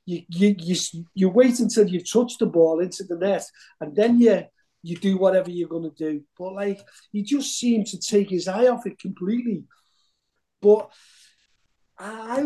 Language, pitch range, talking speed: English, 175-235 Hz, 175 wpm